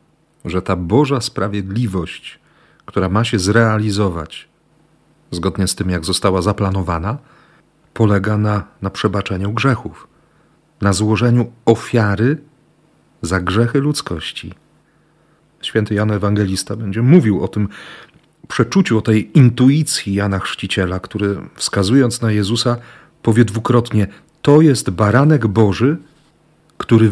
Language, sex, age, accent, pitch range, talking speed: Polish, male, 40-59, native, 100-140 Hz, 110 wpm